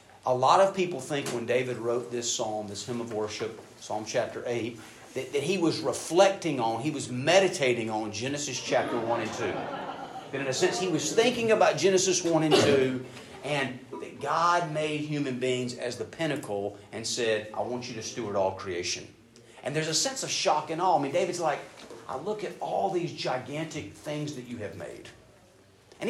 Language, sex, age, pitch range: English, male, 40-59, 115-150 Hz